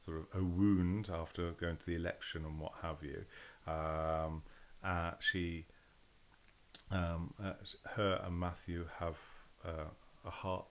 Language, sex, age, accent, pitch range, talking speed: English, male, 40-59, British, 80-95 Hz, 145 wpm